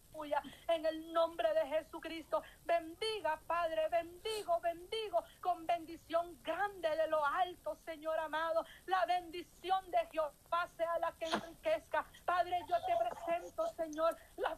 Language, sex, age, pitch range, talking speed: Spanish, female, 40-59, 335-355 Hz, 130 wpm